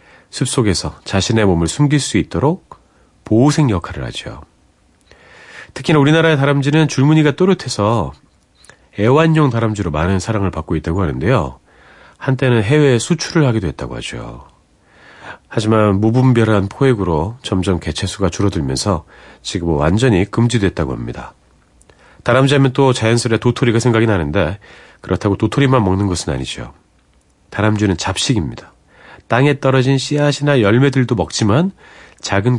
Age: 40-59